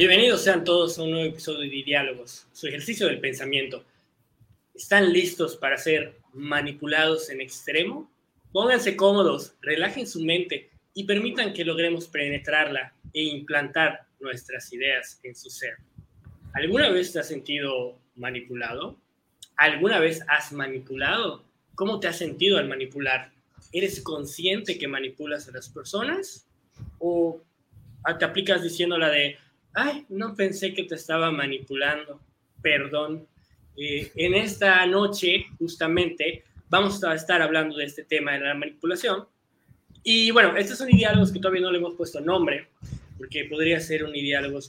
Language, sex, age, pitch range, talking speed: Spanish, male, 20-39, 140-175 Hz, 140 wpm